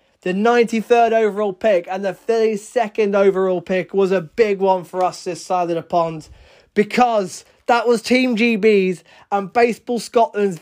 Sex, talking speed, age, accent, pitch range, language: male, 165 wpm, 20-39, British, 185-240 Hz, English